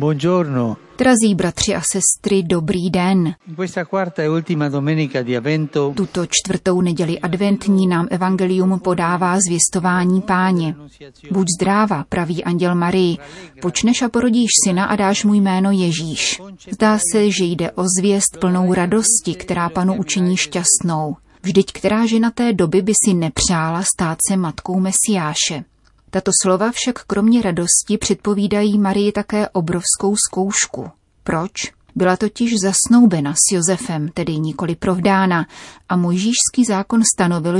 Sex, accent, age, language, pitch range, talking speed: female, native, 30-49, Czech, 175-205 Hz, 120 wpm